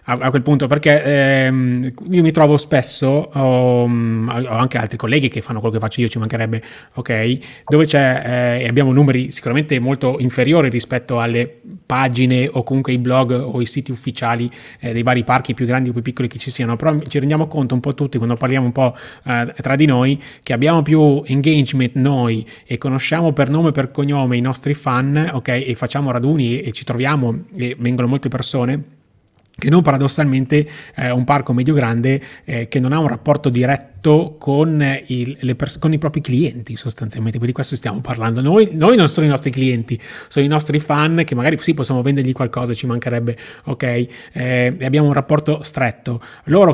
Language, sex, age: Italian, male, 20-39